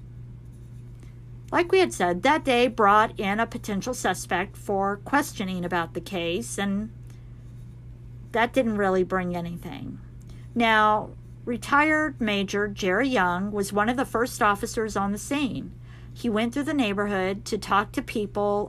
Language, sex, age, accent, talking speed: English, female, 50-69, American, 145 wpm